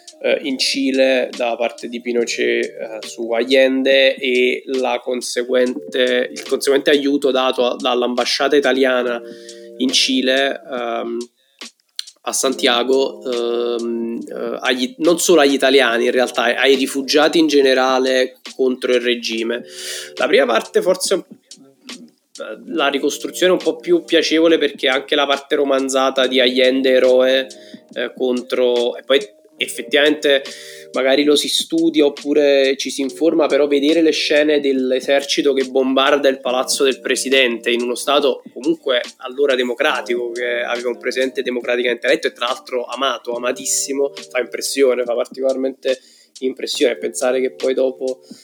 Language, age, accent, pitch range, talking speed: Italian, 20-39, native, 120-140 Hz, 130 wpm